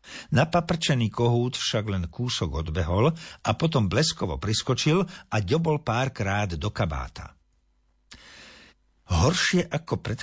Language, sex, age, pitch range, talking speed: Slovak, male, 50-69, 90-135 Hz, 105 wpm